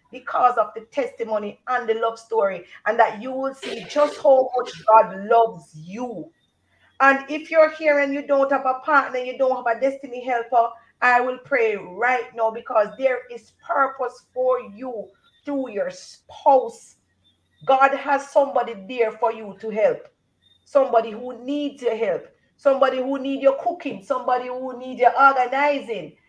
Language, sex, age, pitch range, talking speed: English, female, 40-59, 235-280 Hz, 165 wpm